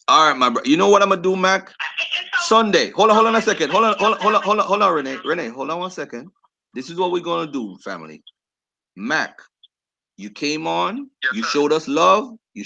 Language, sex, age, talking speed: English, male, 30-49, 240 wpm